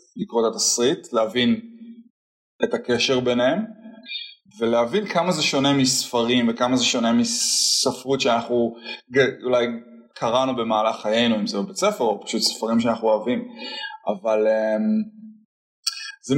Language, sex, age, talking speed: Hebrew, male, 20-39, 115 wpm